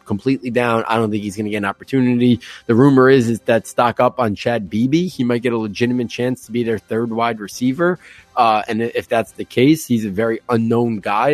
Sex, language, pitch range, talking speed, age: male, English, 110-130 Hz, 235 wpm, 20-39